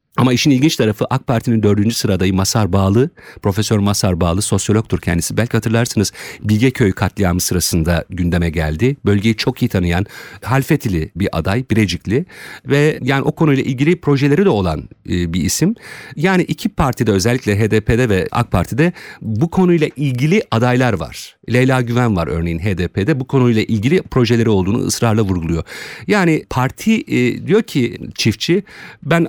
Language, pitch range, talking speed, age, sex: Turkish, 95-150 Hz, 145 wpm, 50-69, male